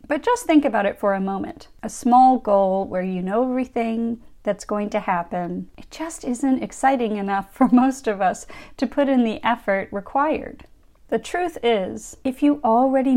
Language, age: English, 40-59